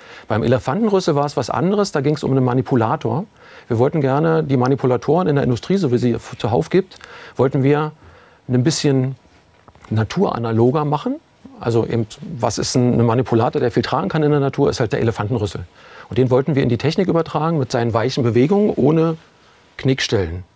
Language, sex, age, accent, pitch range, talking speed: German, male, 40-59, German, 120-145 Hz, 185 wpm